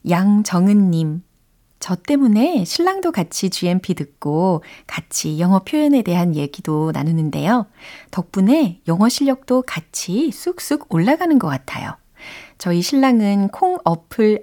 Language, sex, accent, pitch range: Korean, female, native, 155-235 Hz